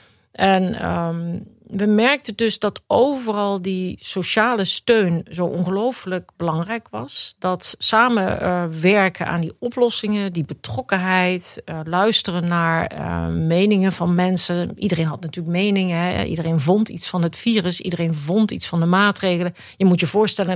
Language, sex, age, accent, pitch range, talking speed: Dutch, female, 40-59, Dutch, 165-200 Hz, 140 wpm